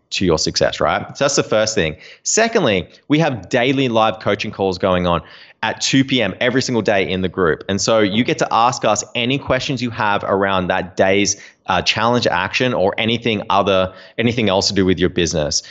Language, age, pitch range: English, 20-39, 95-120 Hz